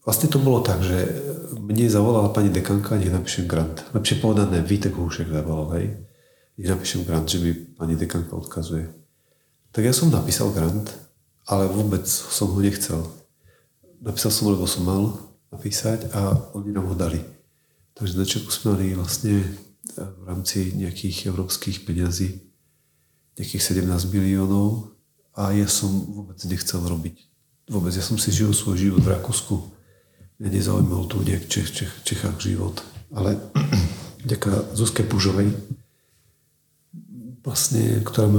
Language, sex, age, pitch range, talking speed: Czech, male, 40-59, 95-110 Hz, 145 wpm